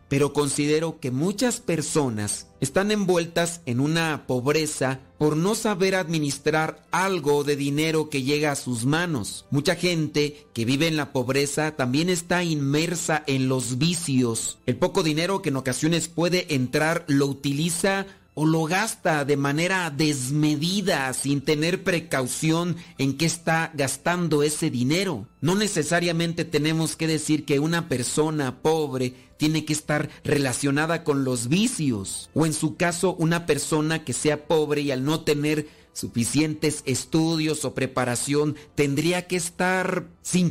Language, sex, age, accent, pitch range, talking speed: Spanish, male, 40-59, Mexican, 140-170 Hz, 145 wpm